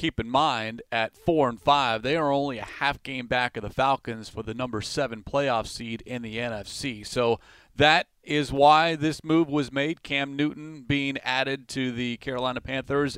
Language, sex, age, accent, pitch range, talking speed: English, male, 30-49, American, 125-155 Hz, 185 wpm